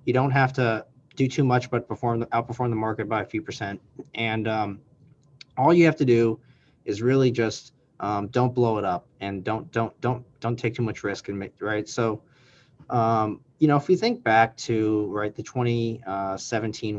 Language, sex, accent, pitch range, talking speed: English, male, American, 105-130 Hz, 195 wpm